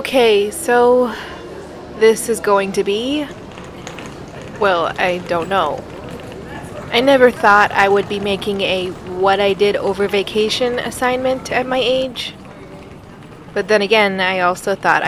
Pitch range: 185-230 Hz